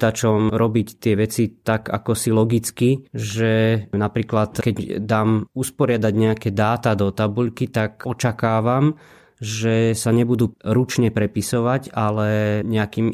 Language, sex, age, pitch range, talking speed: Slovak, male, 20-39, 105-125 Hz, 115 wpm